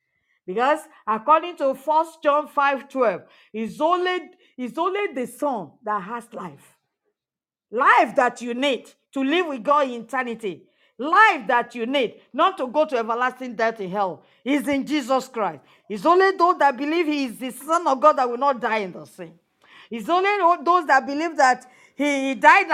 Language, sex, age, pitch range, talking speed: English, female, 40-59, 250-320 Hz, 175 wpm